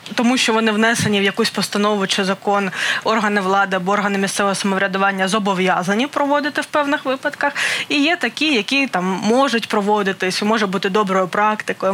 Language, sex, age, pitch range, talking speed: Ukrainian, female, 20-39, 195-230 Hz, 150 wpm